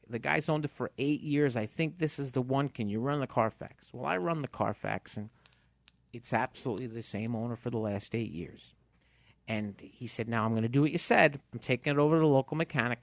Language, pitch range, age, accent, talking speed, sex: English, 110-160 Hz, 50-69, American, 245 wpm, male